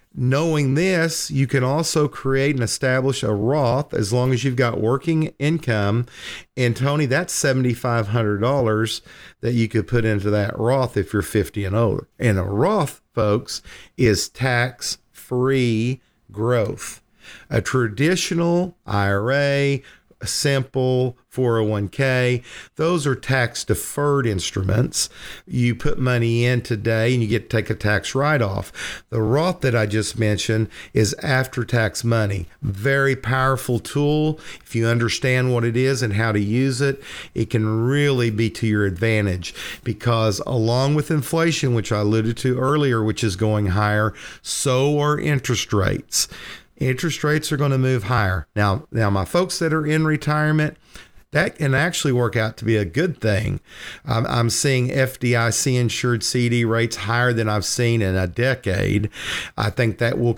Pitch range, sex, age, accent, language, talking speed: 110-135 Hz, male, 50-69, American, English, 155 wpm